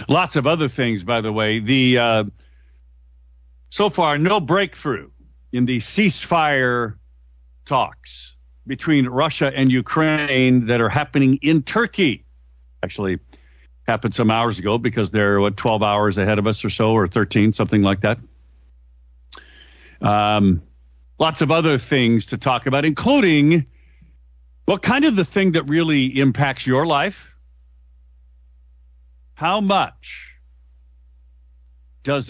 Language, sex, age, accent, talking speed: English, male, 50-69, American, 125 wpm